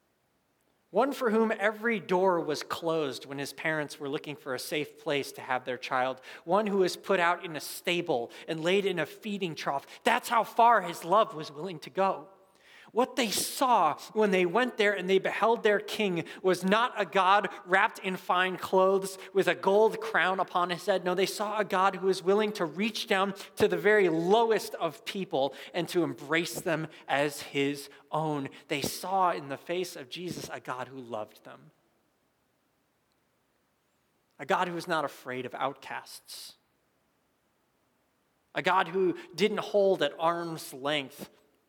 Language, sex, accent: English, male, American